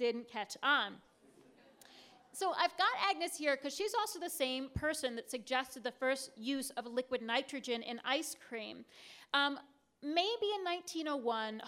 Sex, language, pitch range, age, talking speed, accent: female, English, 235-295 Hz, 30-49, 150 wpm, American